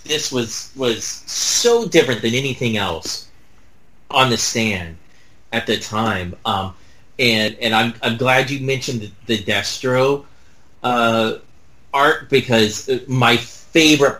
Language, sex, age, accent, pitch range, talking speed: English, male, 30-49, American, 105-120 Hz, 125 wpm